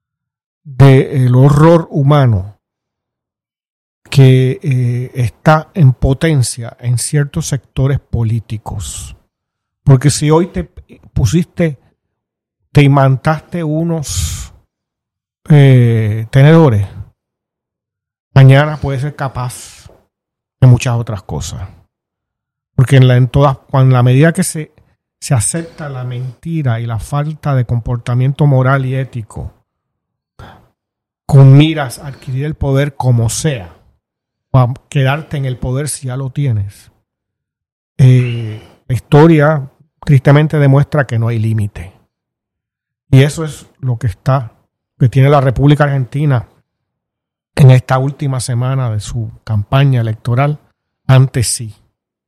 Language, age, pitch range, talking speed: Spanish, 40-59, 115-145 Hz, 110 wpm